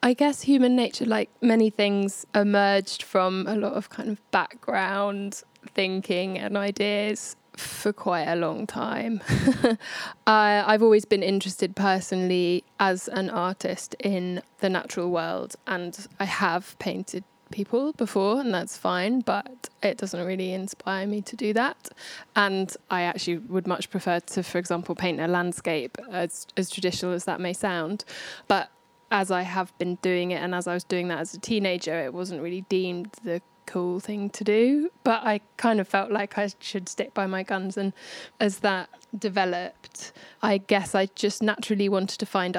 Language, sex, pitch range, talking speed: English, female, 180-210 Hz, 170 wpm